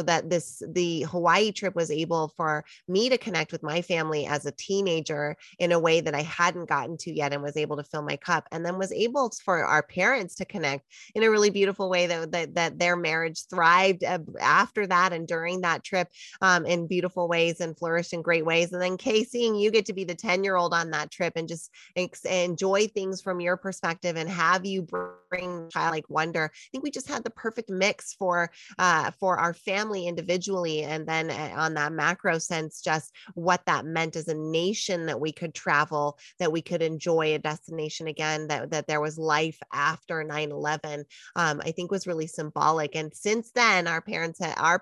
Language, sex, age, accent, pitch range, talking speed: English, female, 20-39, American, 160-190 Hz, 210 wpm